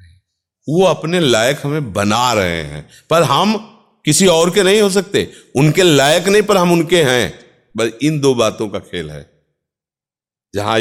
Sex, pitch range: male, 90-115 Hz